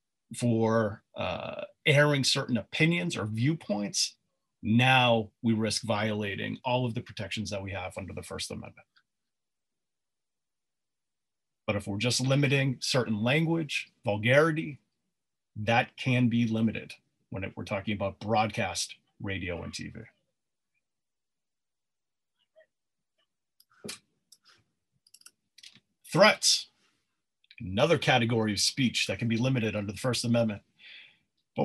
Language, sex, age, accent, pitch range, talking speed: English, male, 40-59, American, 115-140 Hz, 105 wpm